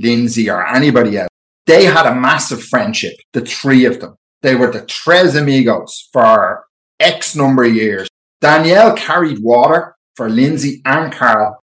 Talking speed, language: 155 wpm, English